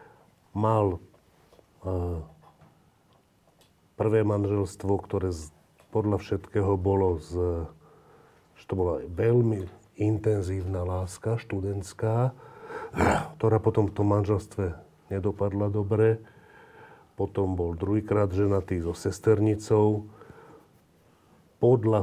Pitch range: 95-110 Hz